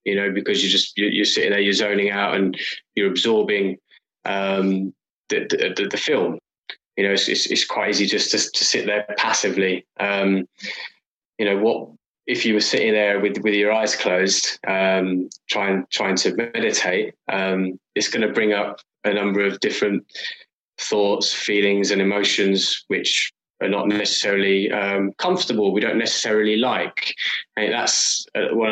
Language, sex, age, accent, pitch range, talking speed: English, male, 20-39, British, 95-105 Hz, 165 wpm